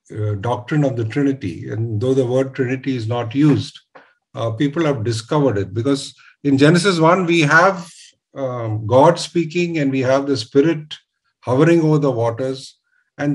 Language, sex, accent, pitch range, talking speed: English, male, Indian, 115-150 Hz, 165 wpm